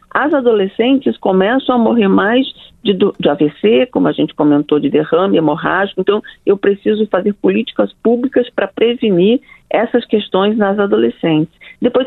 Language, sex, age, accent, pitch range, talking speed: Portuguese, female, 50-69, Brazilian, 185-235 Hz, 145 wpm